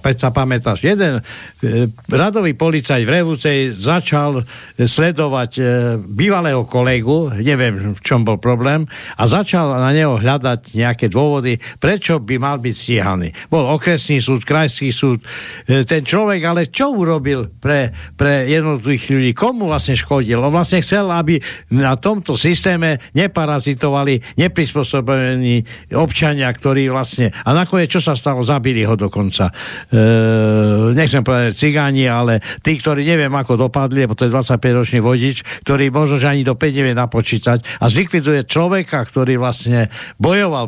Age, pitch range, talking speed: 60-79, 120-155 Hz, 145 wpm